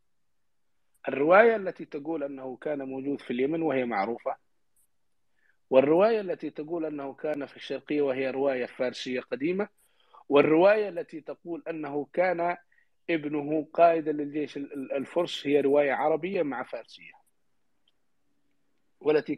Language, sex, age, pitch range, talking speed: English, male, 50-69, 135-160 Hz, 110 wpm